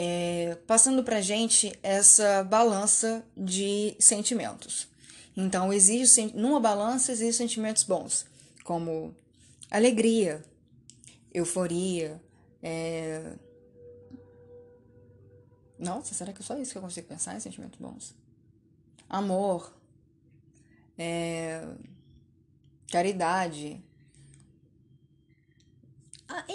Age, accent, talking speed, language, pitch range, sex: 10-29, Brazilian, 85 wpm, Portuguese, 160-225 Hz, female